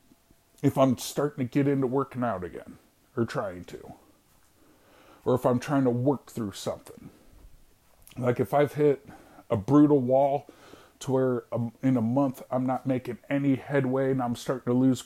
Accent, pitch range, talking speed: American, 115-150 Hz, 165 wpm